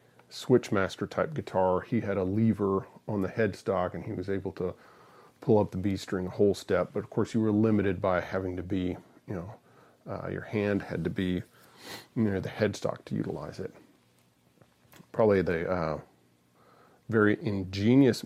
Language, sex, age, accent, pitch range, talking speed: English, male, 40-59, American, 90-110 Hz, 175 wpm